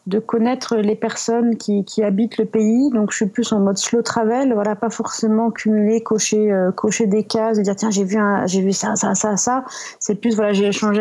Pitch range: 185-225 Hz